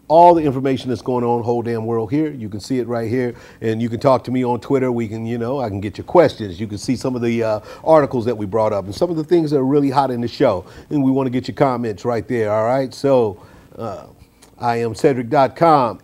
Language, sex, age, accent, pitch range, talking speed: English, male, 50-69, American, 100-130 Hz, 275 wpm